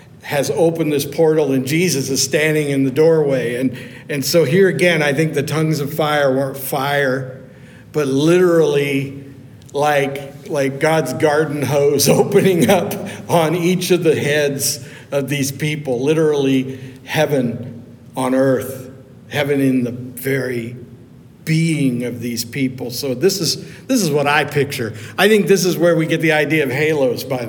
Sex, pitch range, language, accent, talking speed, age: male, 135-165 Hz, English, American, 160 wpm, 60-79